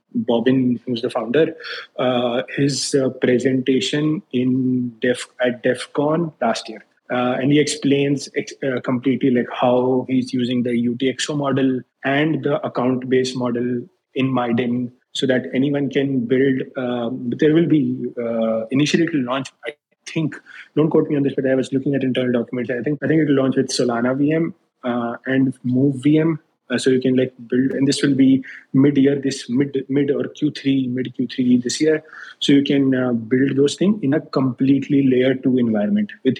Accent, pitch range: Indian, 125-140 Hz